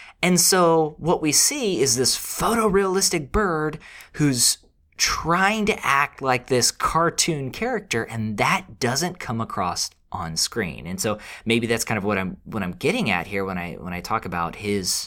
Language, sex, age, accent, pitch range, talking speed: English, male, 20-39, American, 105-150 Hz, 175 wpm